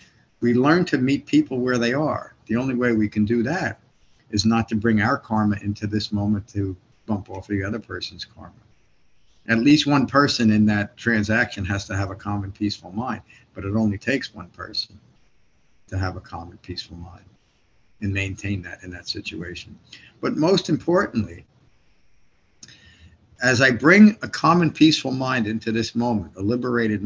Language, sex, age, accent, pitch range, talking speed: English, male, 50-69, American, 105-130 Hz, 175 wpm